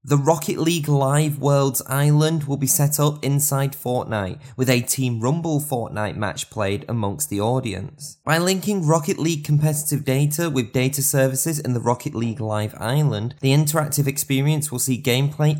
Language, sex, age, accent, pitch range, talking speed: English, male, 20-39, British, 120-150 Hz, 165 wpm